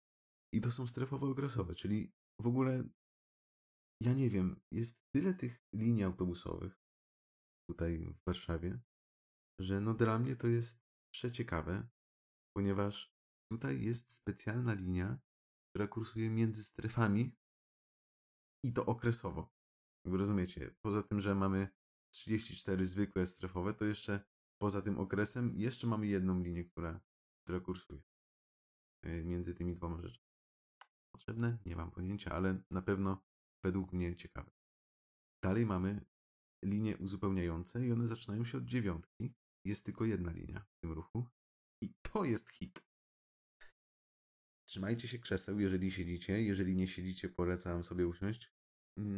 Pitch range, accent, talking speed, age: 85-110 Hz, native, 125 wpm, 30-49